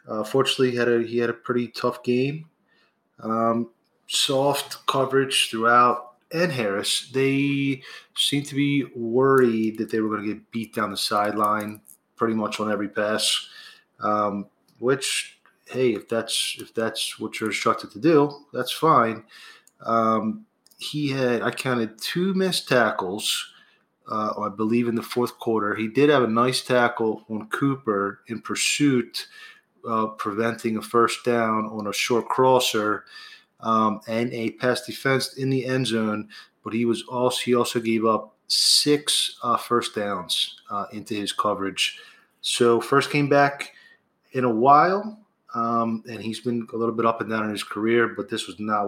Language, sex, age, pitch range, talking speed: English, male, 20-39, 110-130 Hz, 165 wpm